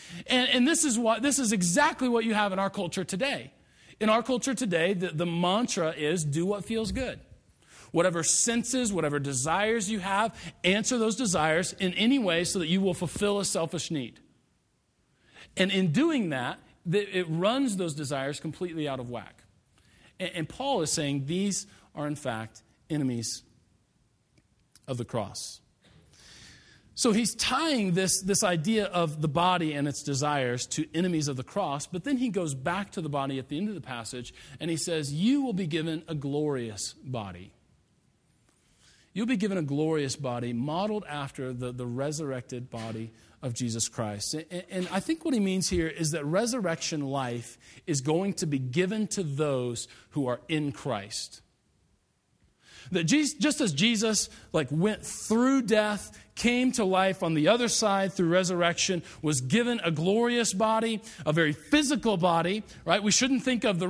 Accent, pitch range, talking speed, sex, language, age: American, 145-210 Hz, 170 wpm, male, English, 40-59